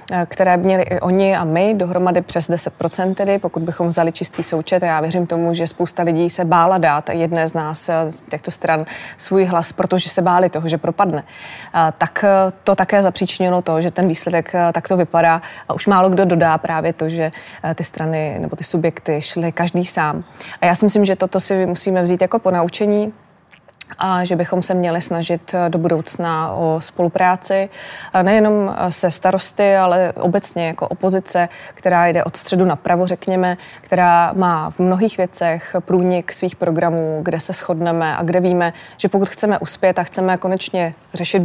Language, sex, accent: Czech, female, native